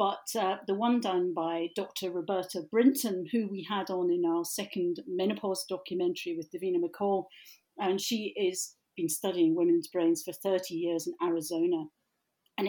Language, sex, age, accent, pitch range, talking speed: English, female, 40-59, British, 175-285 Hz, 160 wpm